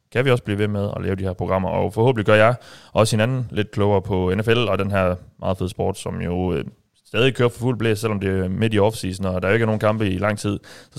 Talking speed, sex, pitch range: 285 wpm, male, 100-120 Hz